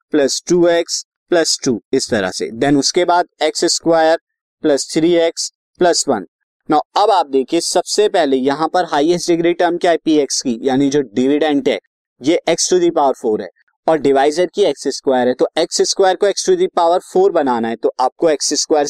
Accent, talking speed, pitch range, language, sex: native, 160 wpm, 150-190 Hz, Hindi, male